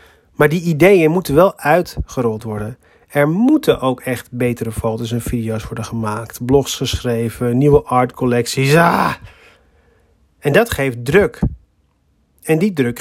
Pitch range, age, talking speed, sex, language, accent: 120-160 Hz, 40-59, 130 wpm, male, Dutch, Dutch